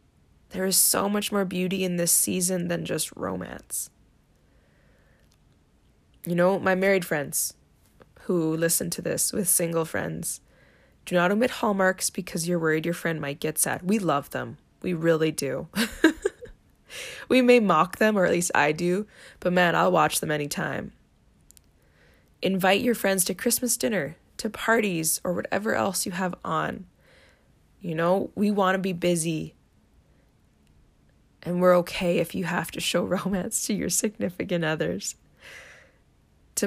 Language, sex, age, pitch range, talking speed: English, female, 20-39, 160-200 Hz, 150 wpm